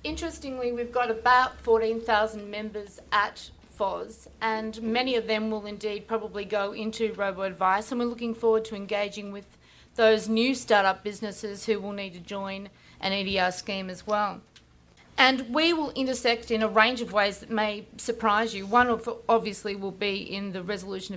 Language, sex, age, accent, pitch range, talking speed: English, female, 40-59, Australian, 195-220 Hz, 170 wpm